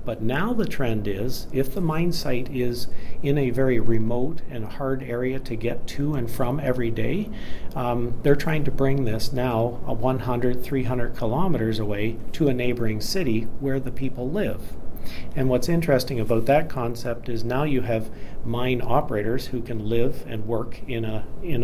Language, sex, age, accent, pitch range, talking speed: English, male, 40-59, American, 115-135 Hz, 175 wpm